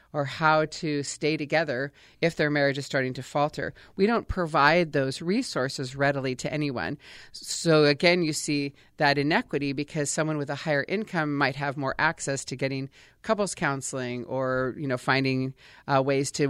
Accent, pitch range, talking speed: American, 140-165 Hz, 170 wpm